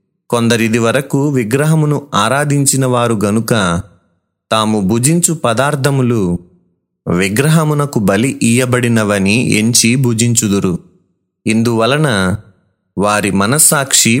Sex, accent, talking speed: male, native, 70 wpm